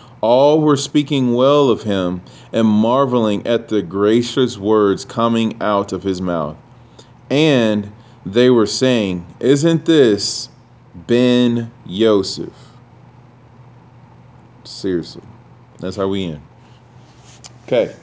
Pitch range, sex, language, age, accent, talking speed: 105-125 Hz, male, English, 30-49, American, 105 wpm